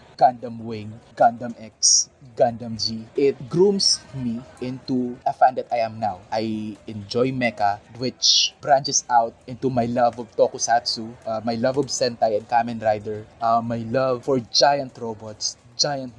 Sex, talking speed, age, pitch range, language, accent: male, 155 wpm, 20-39, 110-135 Hz, Filipino, native